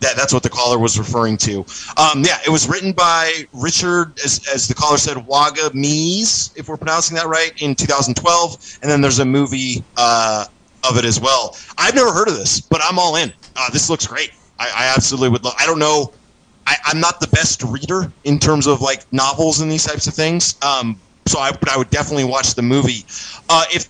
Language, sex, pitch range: English, male, 125-155 Hz